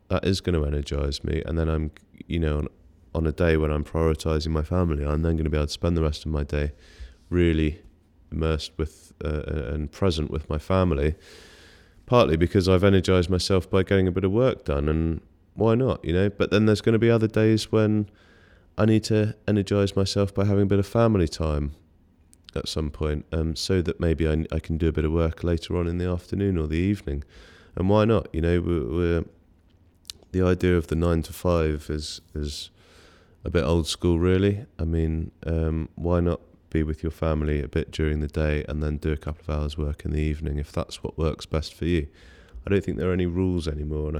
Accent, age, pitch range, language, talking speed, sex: British, 30-49, 80-90 Hz, English, 225 wpm, male